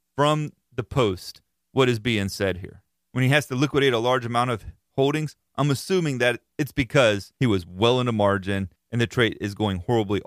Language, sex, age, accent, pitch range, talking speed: English, male, 30-49, American, 105-145 Hz, 205 wpm